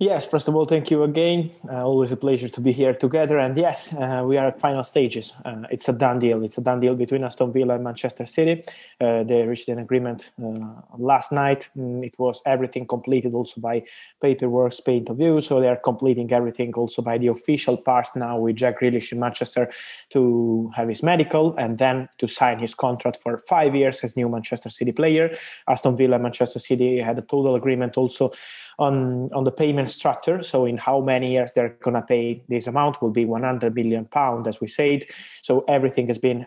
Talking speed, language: 210 wpm, English